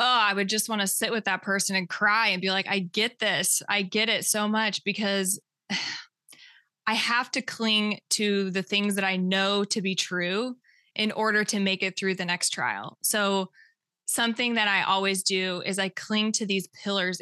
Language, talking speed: English, 200 wpm